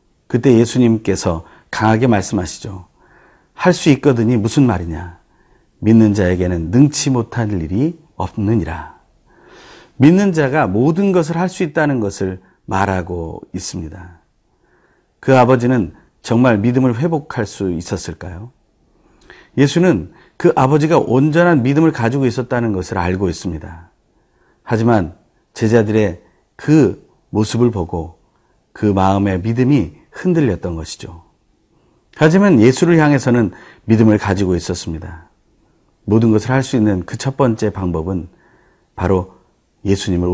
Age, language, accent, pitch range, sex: 40-59, Korean, native, 90-140 Hz, male